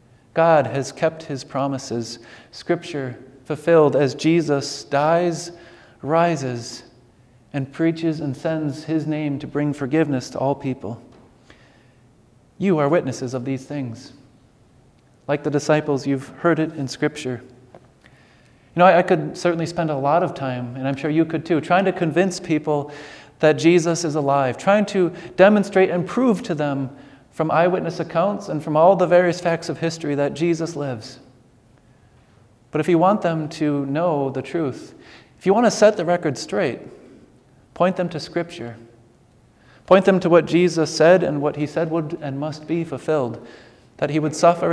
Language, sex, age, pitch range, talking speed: English, male, 30-49, 130-165 Hz, 165 wpm